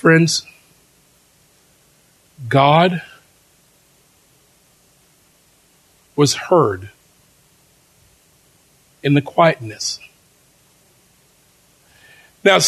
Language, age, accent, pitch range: English, 50-69, American, 150-225 Hz